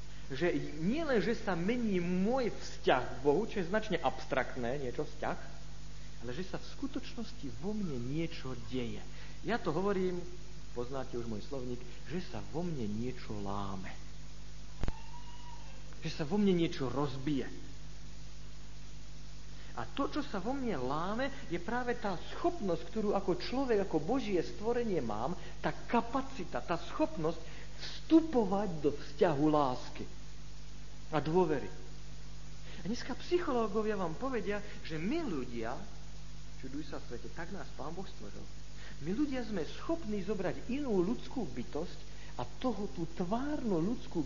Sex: male